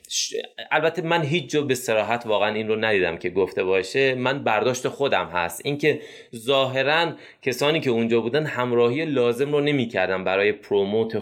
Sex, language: male, Persian